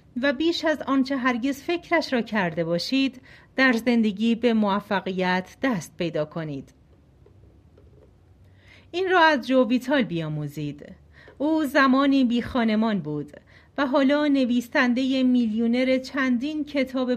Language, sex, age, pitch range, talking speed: Persian, female, 40-59, 210-285 Hz, 115 wpm